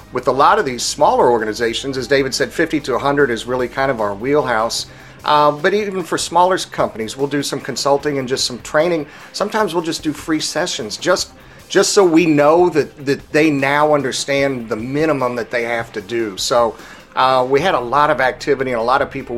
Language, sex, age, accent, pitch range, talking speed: English, male, 40-59, American, 120-150 Hz, 215 wpm